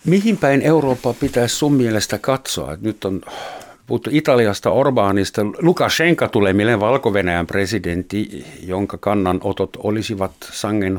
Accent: native